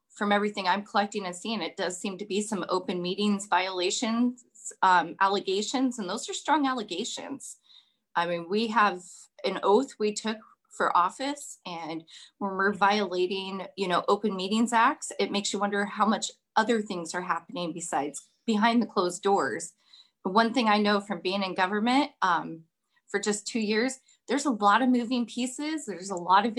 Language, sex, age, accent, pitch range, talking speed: English, female, 30-49, American, 180-235 Hz, 180 wpm